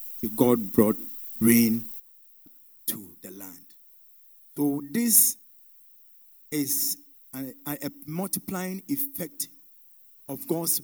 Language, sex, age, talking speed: English, male, 50-69, 85 wpm